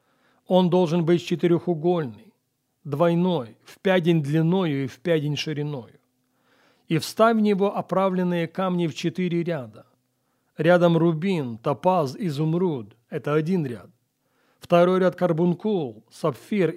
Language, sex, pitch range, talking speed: Russian, male, 145-185 Hz, 120 wpm